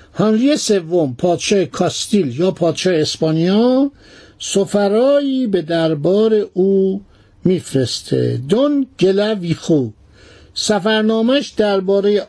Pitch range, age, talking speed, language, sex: 165-225 Hz, 60-79, 80 wpm, Persian, male